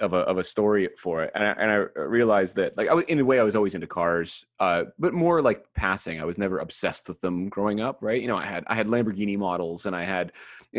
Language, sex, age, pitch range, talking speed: English, male, 30-49, 85-110 Hz, 280 wpm